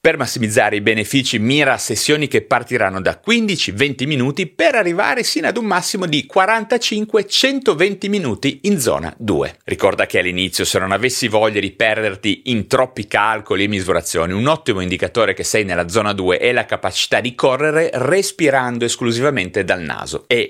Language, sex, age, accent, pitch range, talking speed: Italian, male, 30-49, native, 115-190 Hz, 160 wpm